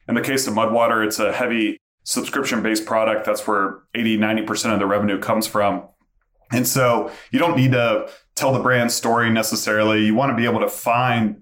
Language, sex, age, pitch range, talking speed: English, male, 30-49, 105-120 Hz, 195 wpm